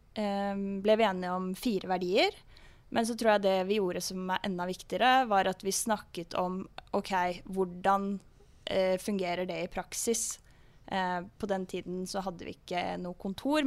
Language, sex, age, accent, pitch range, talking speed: English, female, 20-39, Norwegian, 180-200 Hz, 160 wpm